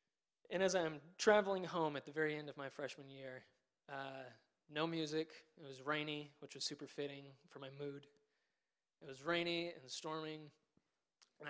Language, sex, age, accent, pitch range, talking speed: English, male, 20-39, American, 145-170 Hz, 165 wpm